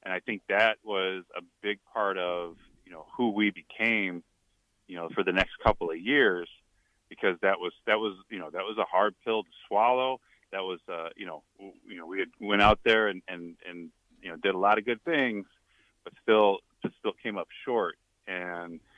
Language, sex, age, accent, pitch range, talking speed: English, male, 30-49, American, 90-105 Hz, 210 wpm